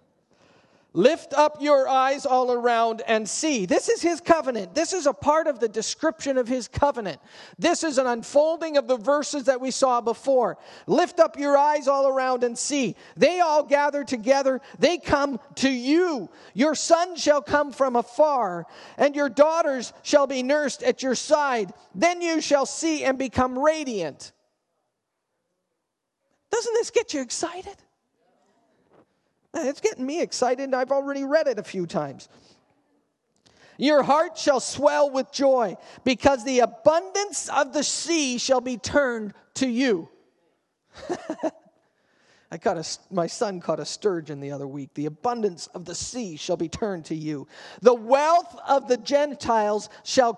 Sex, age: male, 40-59